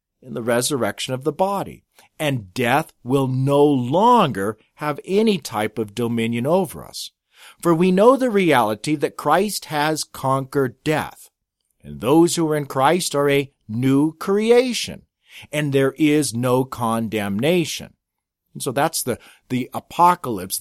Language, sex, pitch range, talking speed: English, male, 120-155 Hz, 145 wpm